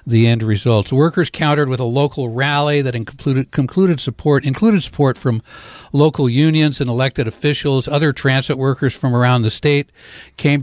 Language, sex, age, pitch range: English, male, 60-79, 115-145 Hz